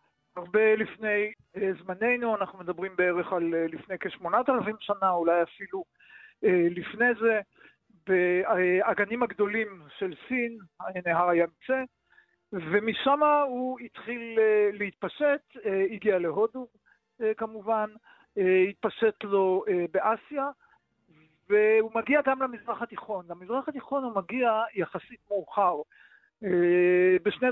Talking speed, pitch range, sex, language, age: 95 wpm, 190-230 Hz, male, Hebrew, 50-69